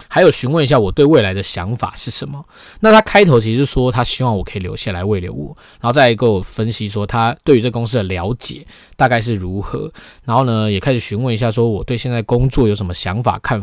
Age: 20-39